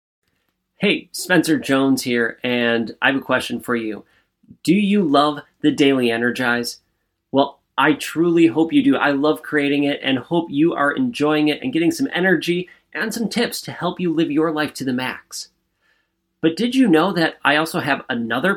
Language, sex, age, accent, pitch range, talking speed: English, male, 30-49, American, 145-205 Hz, 185 wpm